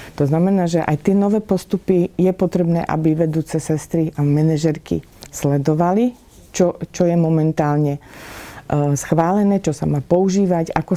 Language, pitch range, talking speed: Slovak, 150-175 Hz, 135 wpm